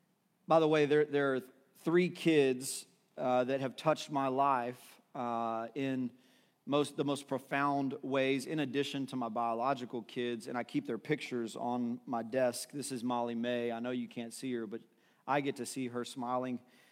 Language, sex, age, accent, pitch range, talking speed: English, male, 40-59, American, 120-145 Hz, 180 wpm